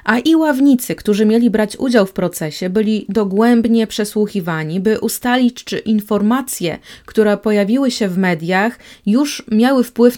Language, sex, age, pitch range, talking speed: Polish, female, 20-39, 200-230 Hz, 140 wpm